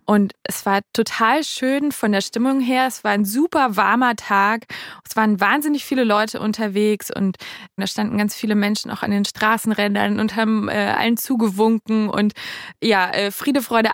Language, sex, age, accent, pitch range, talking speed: German, female, 20-39, German, 205-250 Hz, 175 wpm